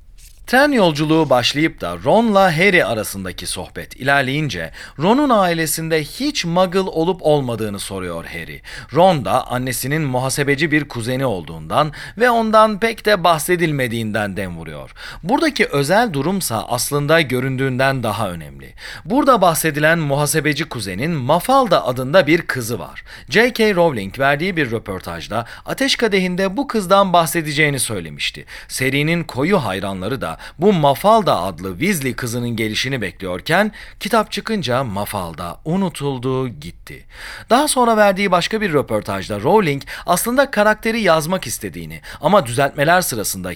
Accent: native